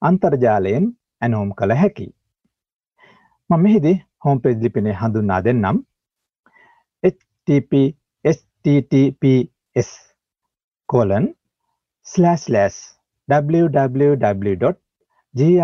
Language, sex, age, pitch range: Japanese, male, 60-79, 120-175 Hz